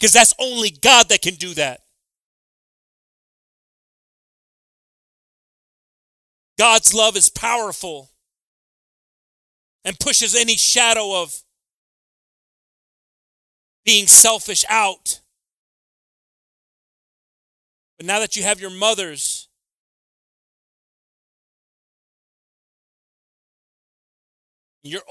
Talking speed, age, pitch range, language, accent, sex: 65 wpm, 40-59, 155-215 Hz, English, American, male